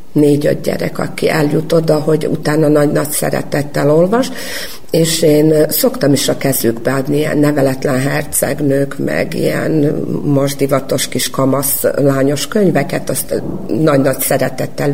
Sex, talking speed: female, 120 wpm